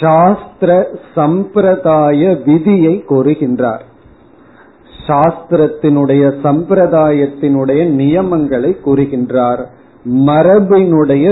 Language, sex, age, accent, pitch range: Tamil, male, 40-59, native, 140-175 Hz